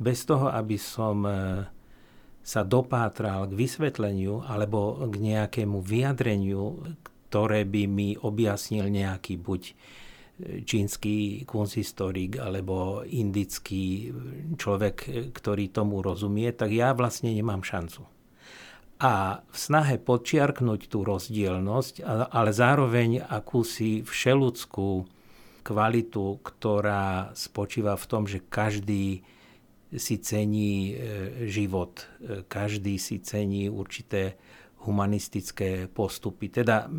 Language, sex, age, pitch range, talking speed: Slovak, male, 60-79, 100-120 Hz, 95 wpm